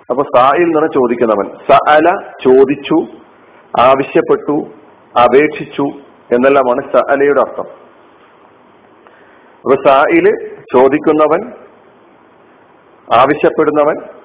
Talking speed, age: 65 wpm, 50-69